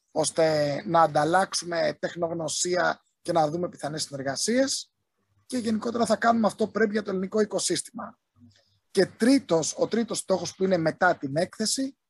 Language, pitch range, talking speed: Greek, 160-215 Hz, 145 wpm